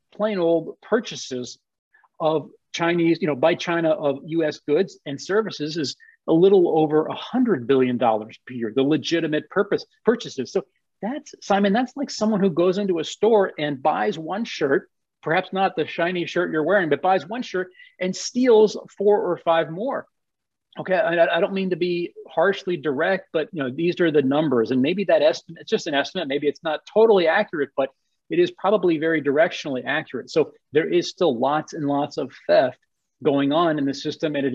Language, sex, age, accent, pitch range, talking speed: English, male, 40-59, American, 135-185 Hz, 195 wpm